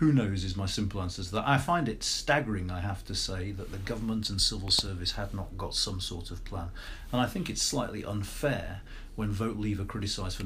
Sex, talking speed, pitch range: male, 235 wpm, 100-125 Hz